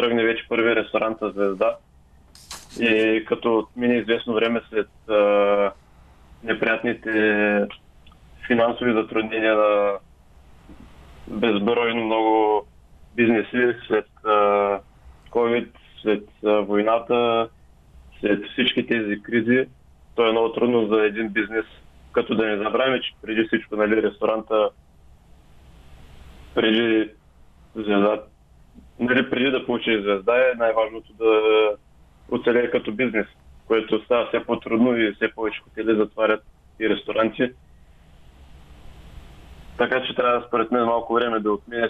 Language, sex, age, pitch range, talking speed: Bulgarian, male, 20-39, 75-115 Hz, 110 wpm